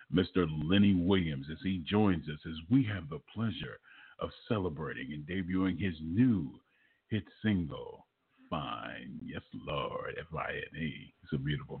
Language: English